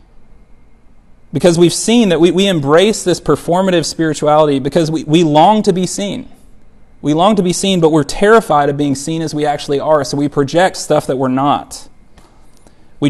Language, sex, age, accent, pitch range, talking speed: English, male, 30-49, American, 135-170 Hz, 185 wpm